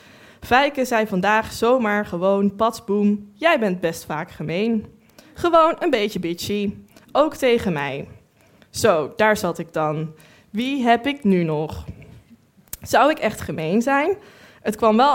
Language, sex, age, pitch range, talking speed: Dutch, female, 20-39, 185-250 Hz, 145 wpm